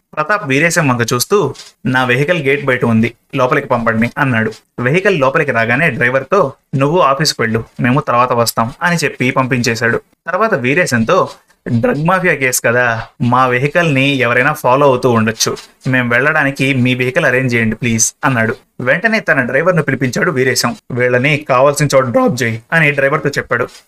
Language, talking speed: Telugu, 155 wpm